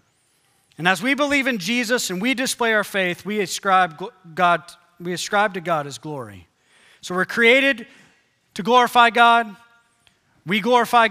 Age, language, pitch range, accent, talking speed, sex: 40-59, English, 185-245 Hz, American, 150 wpm, male